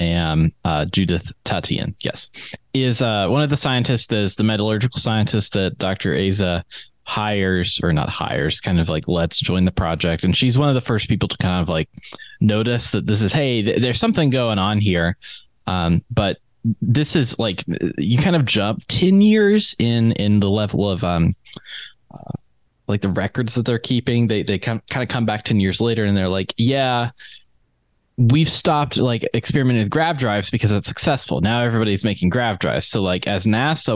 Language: English